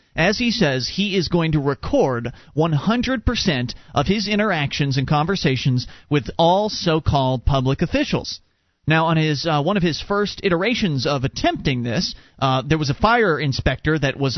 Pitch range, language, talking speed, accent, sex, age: 145-225 Hz, English, 165 wpm, American, male, 30-49